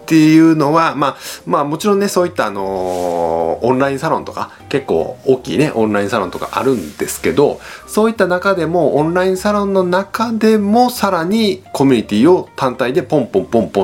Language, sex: Japanese, male